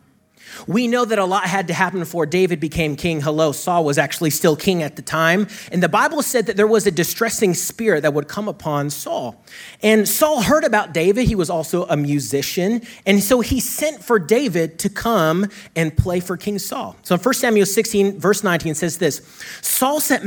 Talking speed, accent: 205 wpm, American